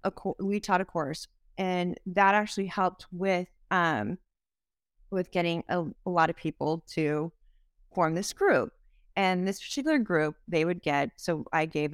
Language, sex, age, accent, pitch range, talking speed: English, female, 30-49, American, 160-190 Hz, 165 wpm